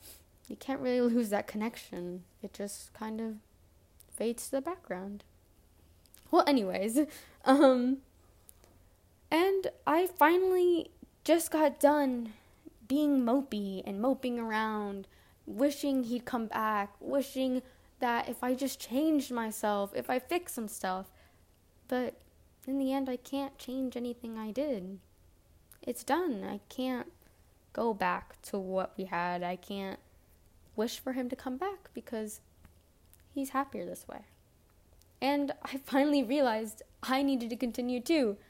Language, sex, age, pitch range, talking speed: English, female, 10-29, 195-270 Hz, 135 wpm